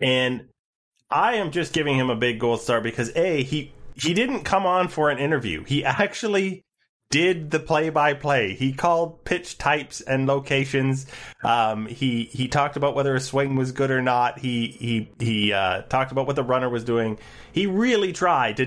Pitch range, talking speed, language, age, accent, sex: 110-145 Hz, 185 wpm, English, 30-49, American, male